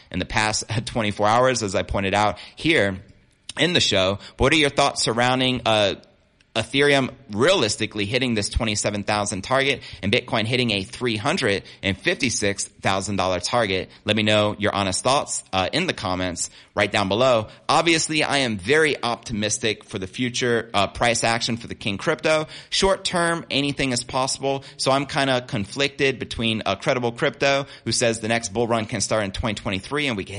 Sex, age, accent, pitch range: male, 30-49, American, 100-130 Hz